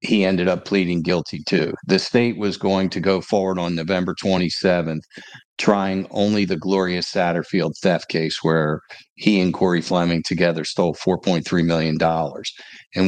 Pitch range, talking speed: 85-95 Hz, 150 wpm